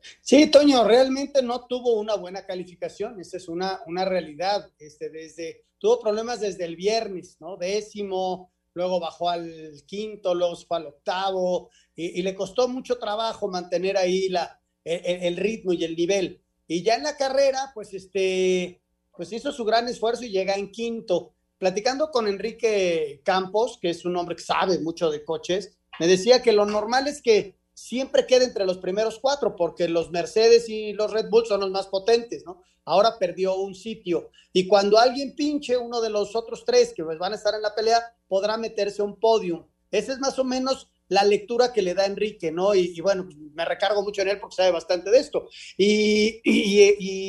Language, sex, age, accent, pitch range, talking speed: Spanish, male, 40-59, Mexican, 180-230 Hz, 195 wpm